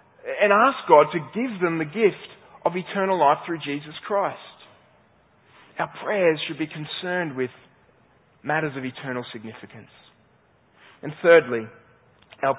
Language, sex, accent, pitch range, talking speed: English, male, Australian, 125-165 Hz, 130 wpm